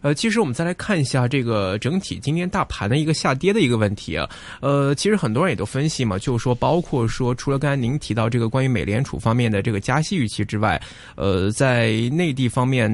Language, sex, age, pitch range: Chinese, male, 20-39, 110-145 Hz